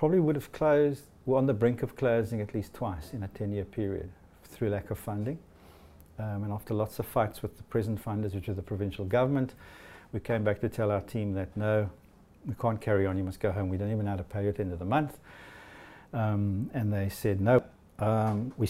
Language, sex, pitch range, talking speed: English, male, 100-125 Hz, 240 wpm